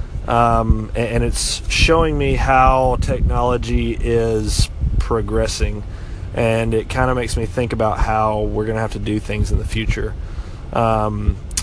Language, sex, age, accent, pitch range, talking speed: English, male, 20-39, American, 95-130 Hz, 150 wpm